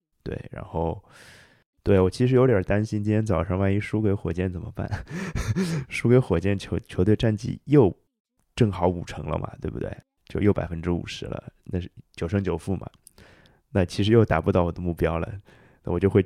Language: Chinese